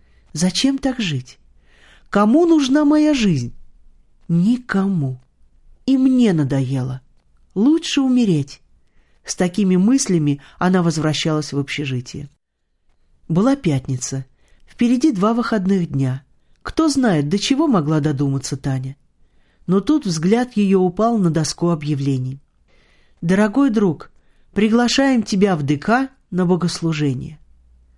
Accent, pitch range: native, 140-230 Hz